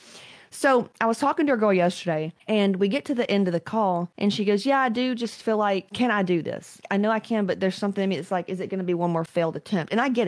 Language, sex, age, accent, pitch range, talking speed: English, female, 30-49, American, 175-230 Hz, 310 wpm